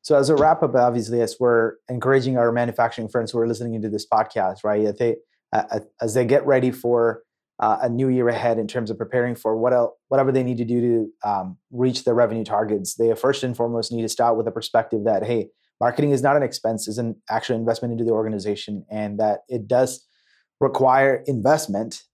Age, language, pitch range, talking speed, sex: 30-49, English, 110-125 Hz, 210 wpm, male